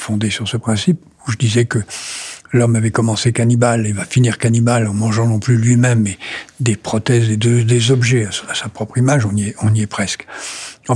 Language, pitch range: French, 110-135 Hz